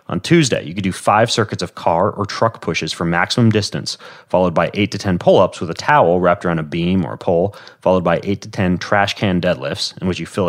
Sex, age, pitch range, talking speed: male, 30-49, 85-105 Hz, 245 wpm